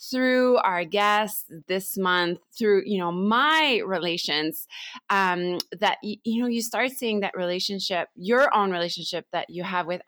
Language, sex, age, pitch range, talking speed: English, female, 20-39, 170-220 Hz, 155 wpm